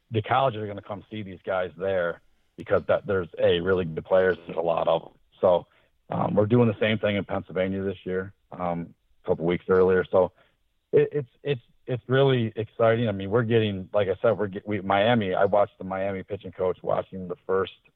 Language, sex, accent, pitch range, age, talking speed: English, male, American, 90-105 Hz, 40-59, 210 wpm